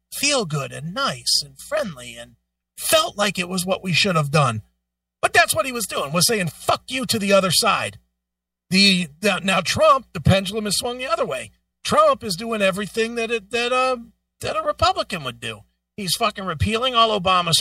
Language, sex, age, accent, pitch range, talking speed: English, male, 40-59, American, 135-225 Hz, 205 wpm